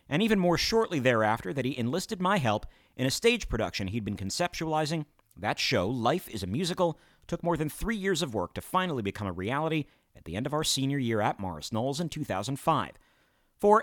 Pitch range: 105-170 Hz